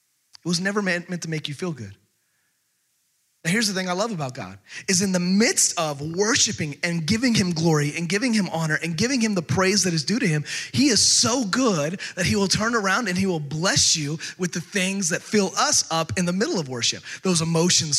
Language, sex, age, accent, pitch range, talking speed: English, male, 30-49, American, 155-195 Hz, 230 wpm